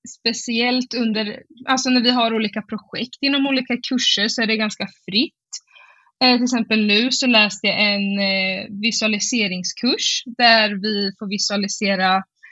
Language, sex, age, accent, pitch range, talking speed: Swedish, female, 20-39, native, 205-245 Hz, 125 wpm